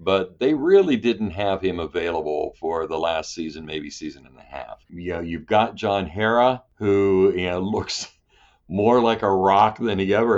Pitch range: 90-110 Hz